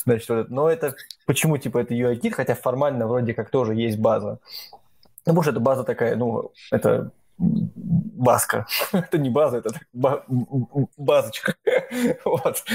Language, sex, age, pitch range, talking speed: Russian, male, 20-39, 115-140 Hz, 135 wpm